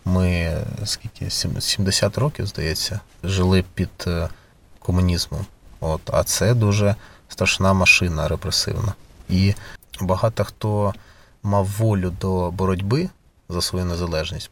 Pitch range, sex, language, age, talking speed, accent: 90-110 Hz, male, Ukrainian, 30-49, 105 wpm, native